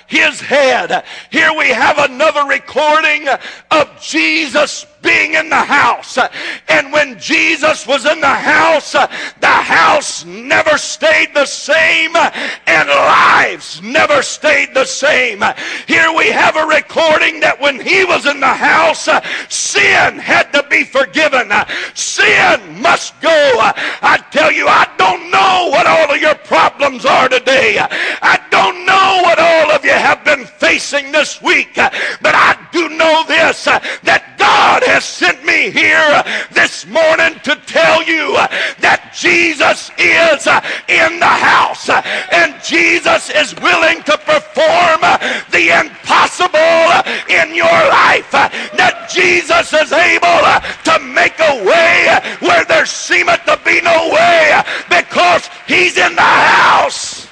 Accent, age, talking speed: American, 50-69, 135 wpm